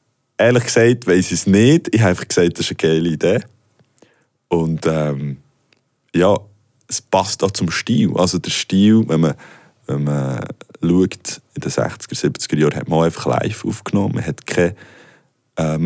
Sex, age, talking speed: male, 20-39, 170 wpm